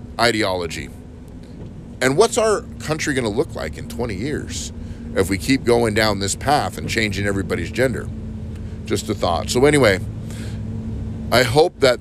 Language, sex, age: English, male, 30-49